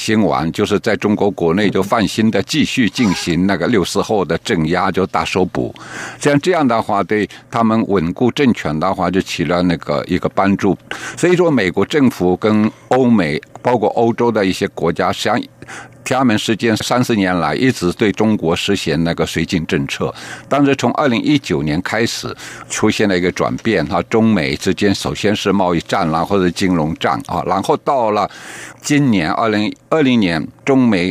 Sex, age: male, 60-79